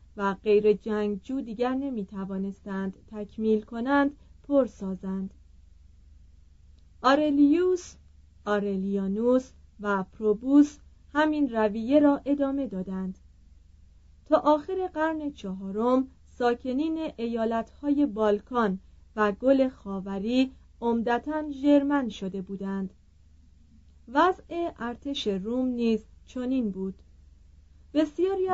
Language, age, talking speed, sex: Persian, 40-59, 80 wpm, female